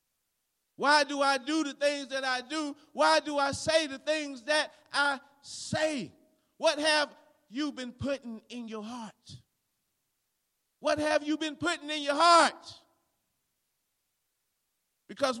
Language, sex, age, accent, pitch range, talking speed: English, male, 40-59, American, 195-290 Hz, 135 wpm